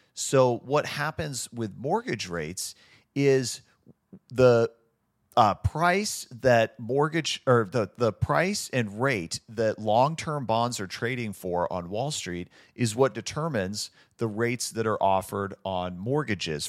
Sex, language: male, English